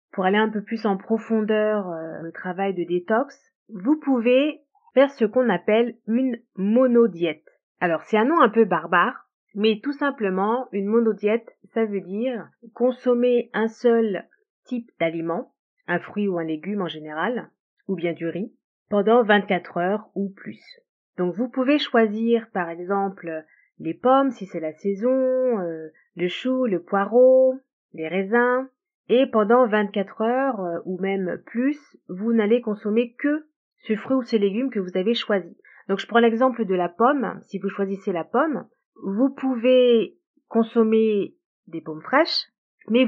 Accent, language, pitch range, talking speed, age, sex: French, French, 195-255 Hz, 160 wpm, 30-49, female